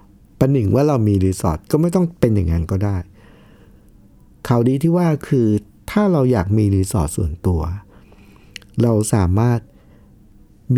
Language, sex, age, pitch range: Thai, male, 60-79, 95-135 Hz